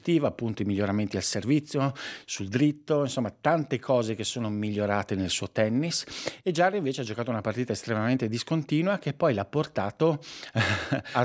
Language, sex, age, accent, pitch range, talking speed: Italian, male, 50-69, native, 100-135 Hz, 160 wpm